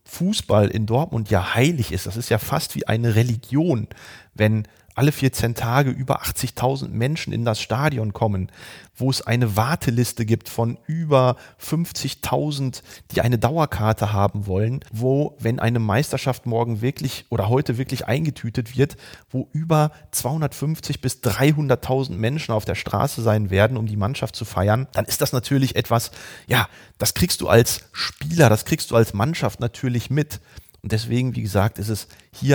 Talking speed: 165 wpm